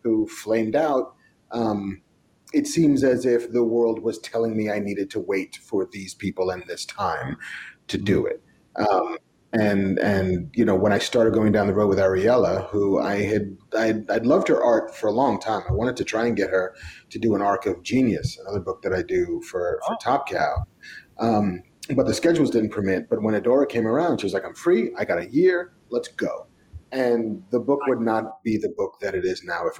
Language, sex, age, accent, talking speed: English, male, 30-49, American, 220 wpm